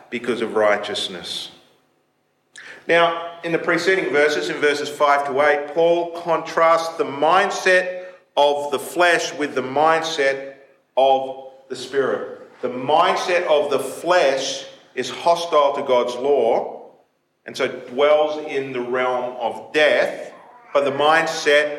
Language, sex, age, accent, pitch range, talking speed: English, male, 40-59, Australian, 130-170 Hz, 130 wpm